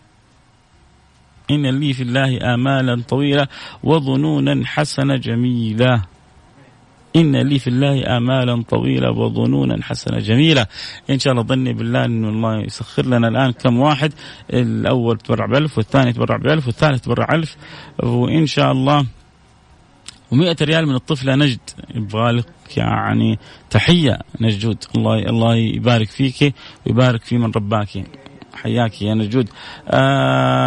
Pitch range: 110-135 Hz